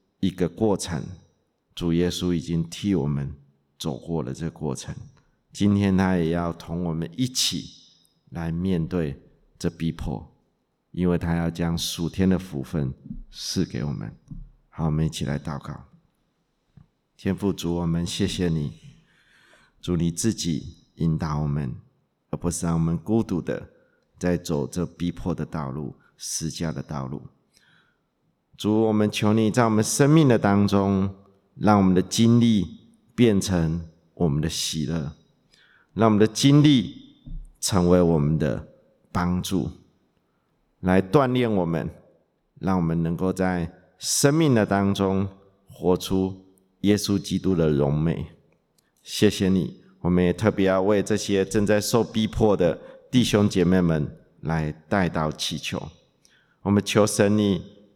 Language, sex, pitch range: English, male, 80-100 Hz